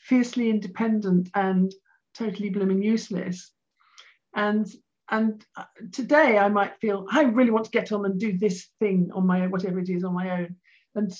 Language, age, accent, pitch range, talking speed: English, 50-69, British, 205-265 Hz, 170 wpm